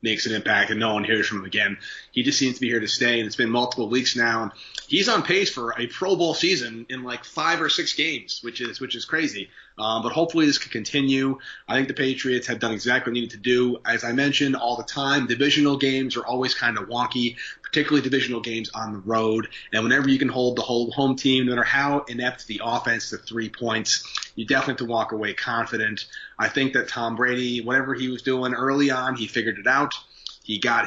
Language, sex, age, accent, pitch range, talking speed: English, male, 30-49, American, 115-135 Hz, 235 wpm